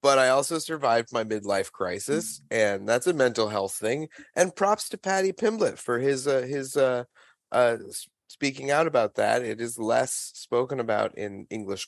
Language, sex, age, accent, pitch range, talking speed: English, male, 30-49, American, 115-165 Hz, 175 wpm